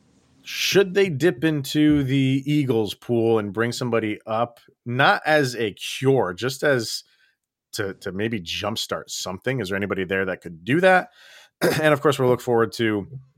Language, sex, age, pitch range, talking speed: English, male, 30-49, 100-135 Hz, 165 wpm